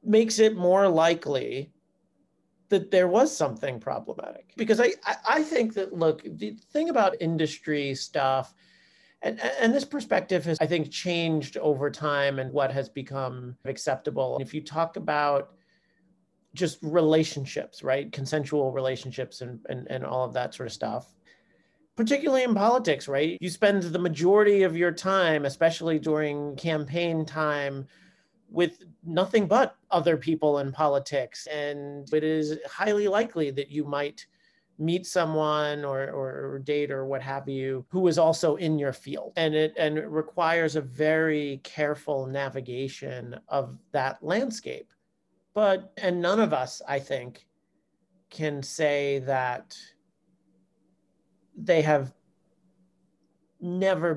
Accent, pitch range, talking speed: American, 140-180 Hz, 135 wpm